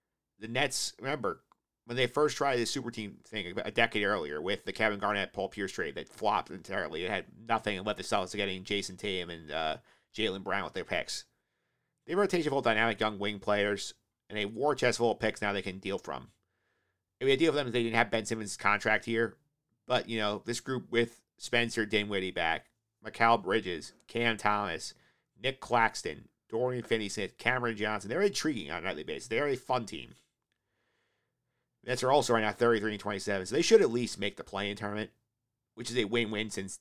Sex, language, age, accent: male, English, 50-69, American